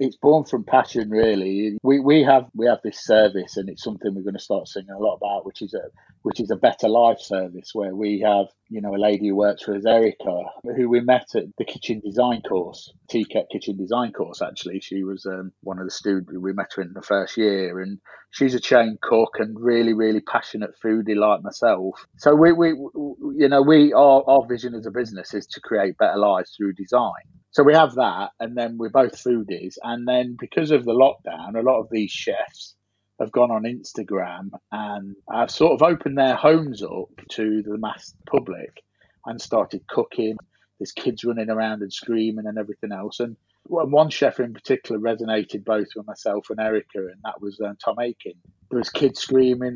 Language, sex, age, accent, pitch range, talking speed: English, male, 30-49, British, 105-125 Hz, 205 wpm